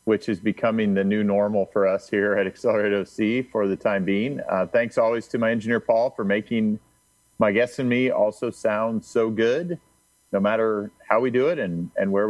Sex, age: male, 40-59